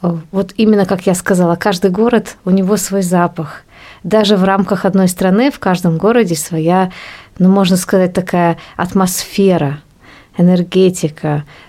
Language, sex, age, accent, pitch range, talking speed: Russian, female, 20-39, native, 165-190 Hz, 135 wpm